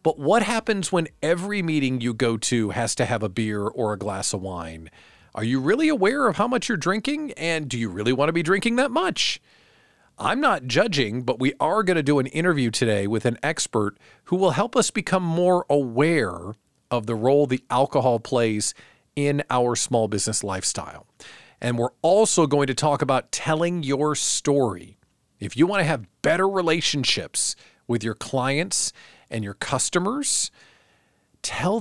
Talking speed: 180 wpm